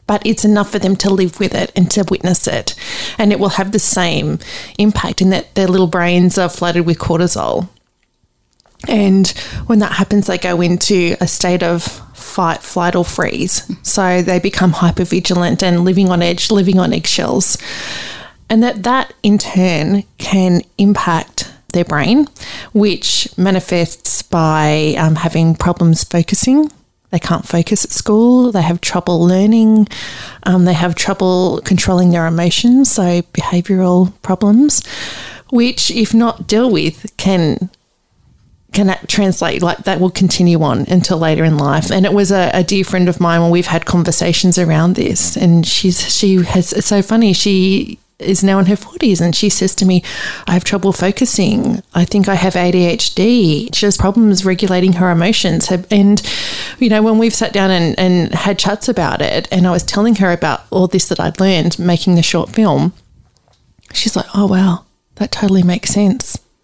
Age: 20-39